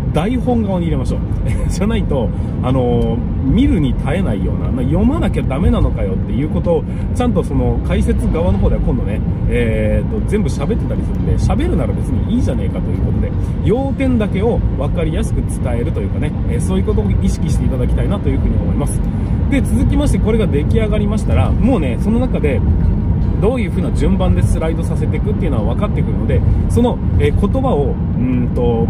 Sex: male